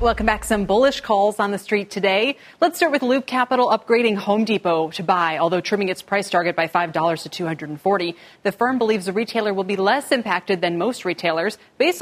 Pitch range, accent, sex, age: 175-230 Hz, American, female, 30-49